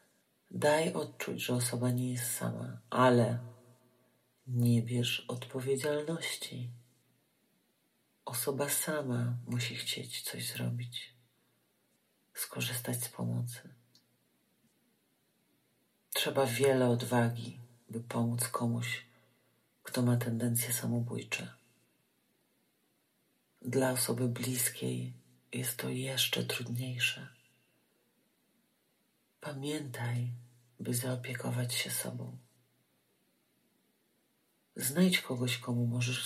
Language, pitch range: Polish, 115-130 Hz